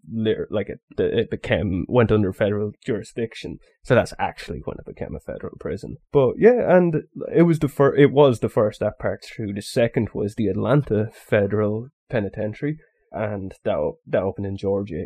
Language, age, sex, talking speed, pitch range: English, 20-39, male, 175 wpm, 105-140 Hz